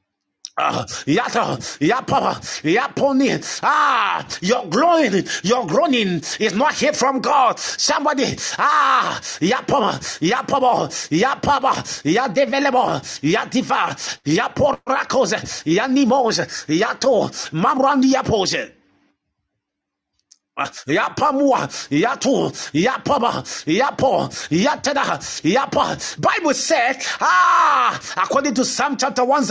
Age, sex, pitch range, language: 50-69, male, 250-295 Hz, Japanese